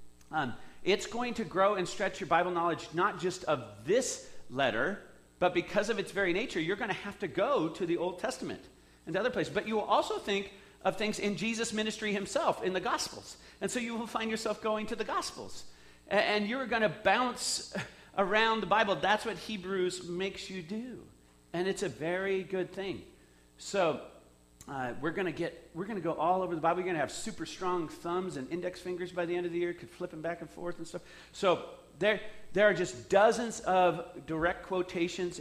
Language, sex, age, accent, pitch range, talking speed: English, male, 40-59, American, 150-195 Hz, 210 wpm